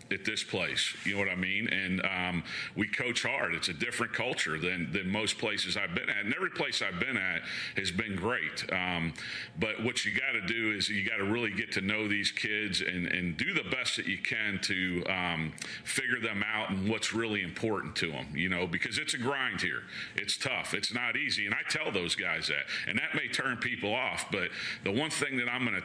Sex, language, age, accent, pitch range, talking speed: male, English, 40-59, American, 95-110 Hz, 235 wpm